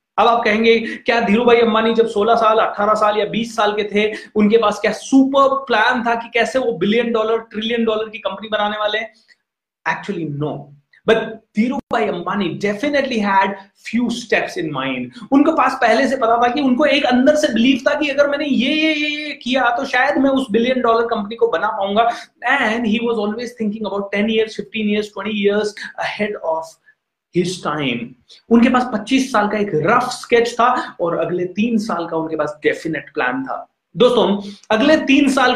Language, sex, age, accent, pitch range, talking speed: Hindi, male, 30-49, native, 185-240 Hz, 185 wpm